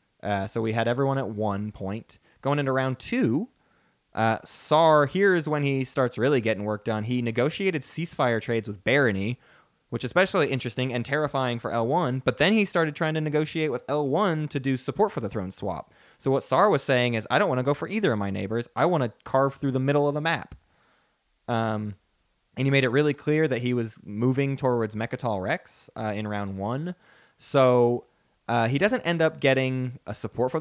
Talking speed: 205 wpm